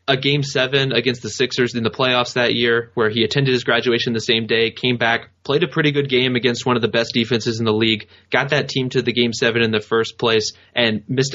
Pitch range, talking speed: 110-130 Hz, 255 wpm